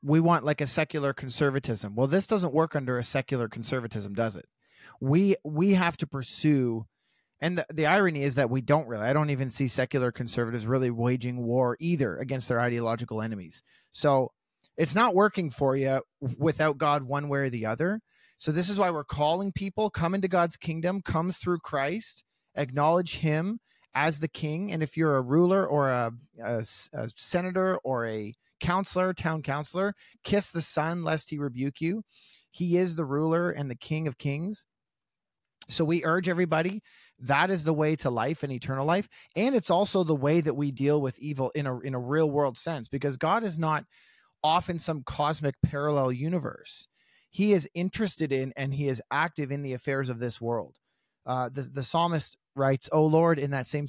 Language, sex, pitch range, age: English, male, 135-170 Hz, 40-59